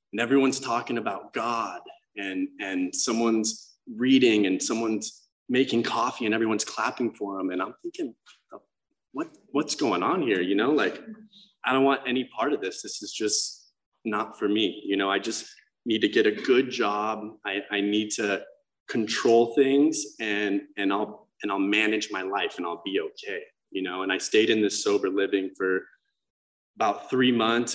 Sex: male